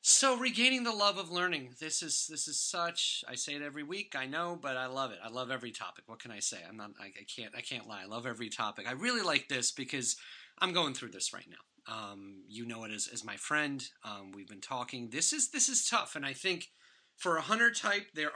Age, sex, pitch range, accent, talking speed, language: 30-49, male, 120-165 Hz, American, 250 wpm, English